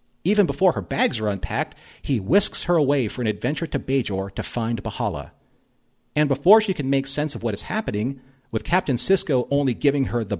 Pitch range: 110-155 Hz